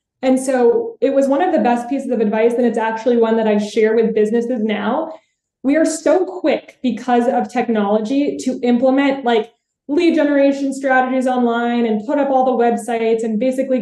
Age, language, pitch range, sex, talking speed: 20-39, English, 230-275 Hz, female, 185 wpm